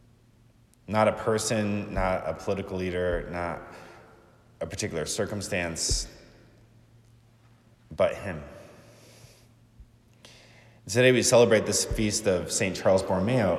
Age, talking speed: 30-49, 95 wpm